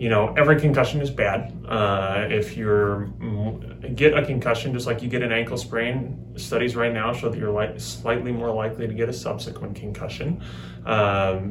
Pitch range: 105-130 Hz